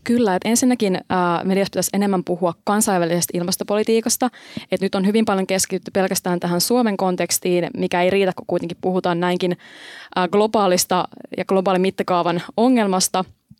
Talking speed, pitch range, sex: 130 wpm, 180-215 Hz, female